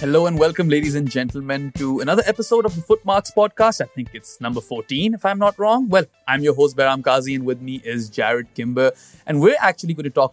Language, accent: English, Indian